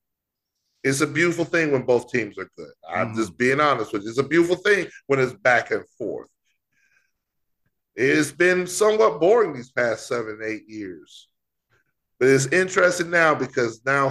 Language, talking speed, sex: English, 165 wpm, male